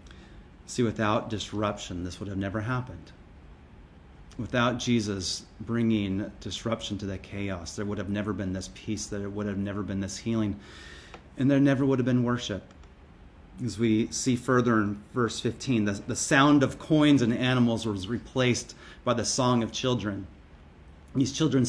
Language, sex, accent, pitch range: English, male, American, 90-115 Hz